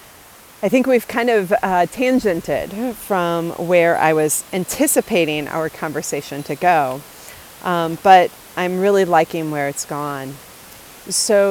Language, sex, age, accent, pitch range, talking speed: English, female, 30-49, American, 160-210 Hz, 130 wpm